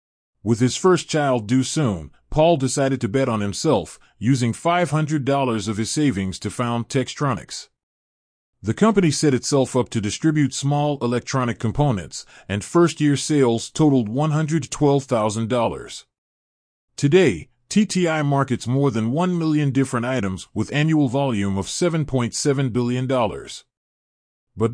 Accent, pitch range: American, 110-145 Hz